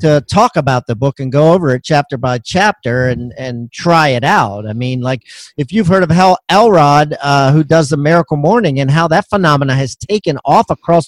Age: 40-59